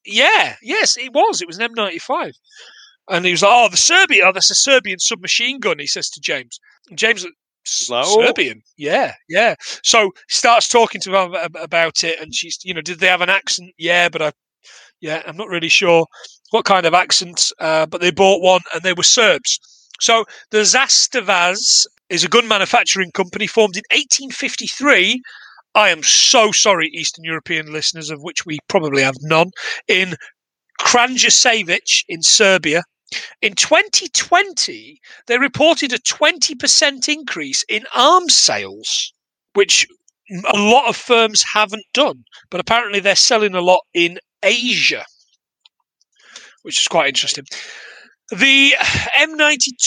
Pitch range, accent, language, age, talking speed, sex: 180-275 Hz, British, English, 30-49, 155 wpm, male